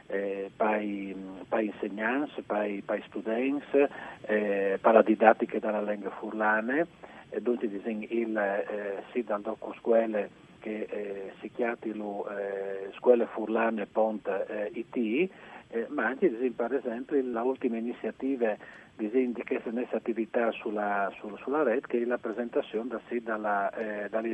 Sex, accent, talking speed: male, native, 145 wpm